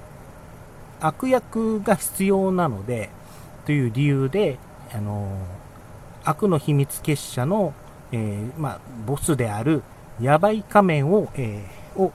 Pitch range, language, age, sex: 115-175 Hz, Japanese, 40-59, male